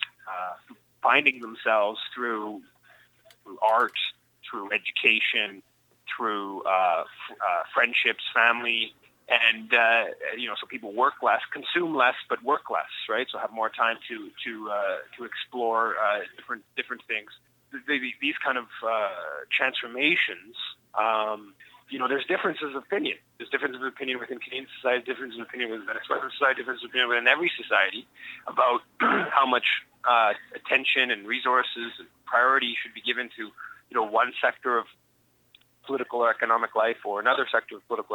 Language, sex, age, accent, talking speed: English, male, 30-49, American, 150 wpm